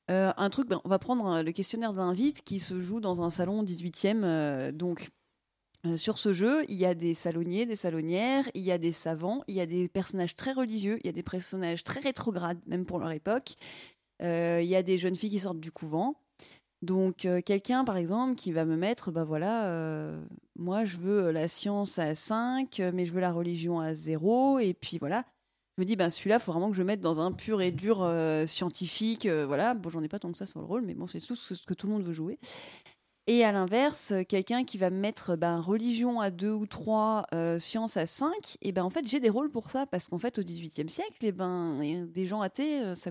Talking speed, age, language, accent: 235 wpm, 30-49, French, French